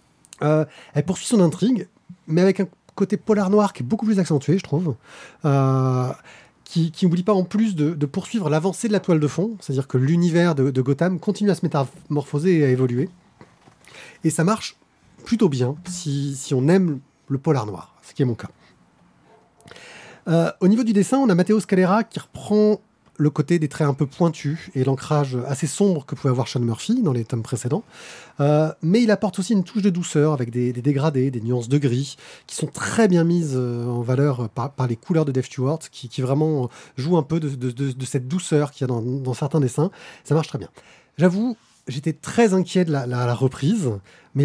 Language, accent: French, French